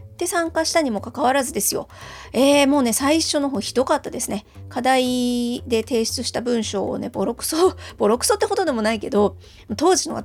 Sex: female